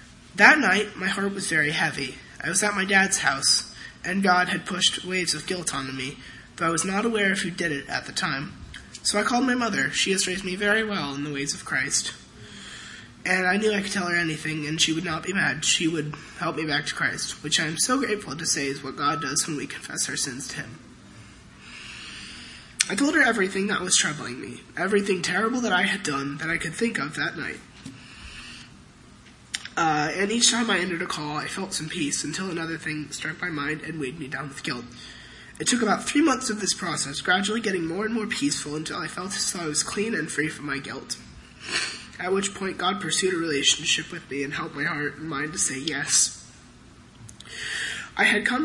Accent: American